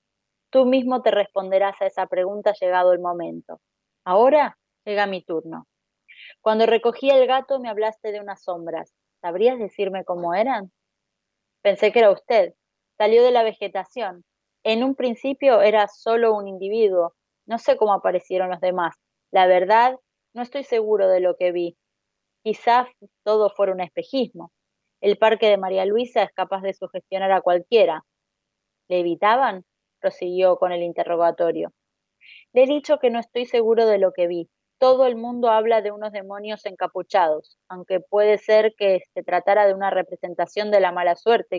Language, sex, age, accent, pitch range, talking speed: Spanish, female, 20-39, Argentinian, 185-225 Hz, 160 wpm